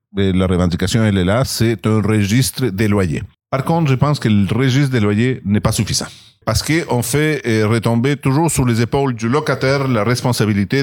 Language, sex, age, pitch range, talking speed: French, male, 40-59, 105-135 Hz, 190 wpm